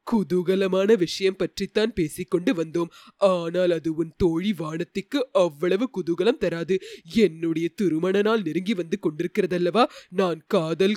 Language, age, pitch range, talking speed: Tamil, 30-49, 180-255 Hz, 110 wpm